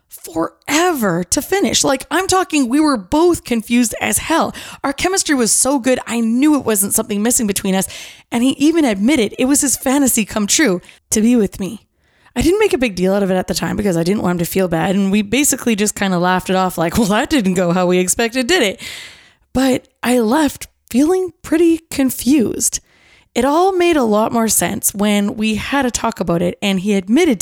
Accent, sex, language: American, female, English